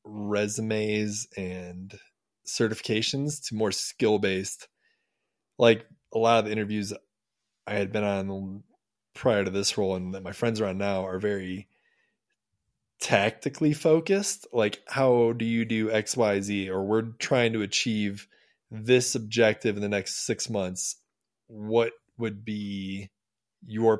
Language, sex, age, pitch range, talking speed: English, male, 20-39, 100-115 Hz, 135 wpm